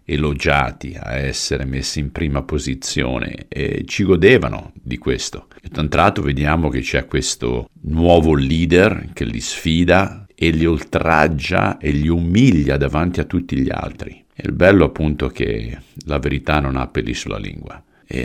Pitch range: 70-80 Hz